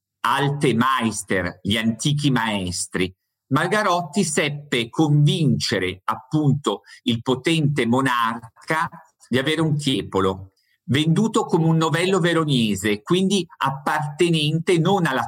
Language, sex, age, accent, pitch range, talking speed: Italian, male, 50-69, native, 120-160 Hz, 100 wpm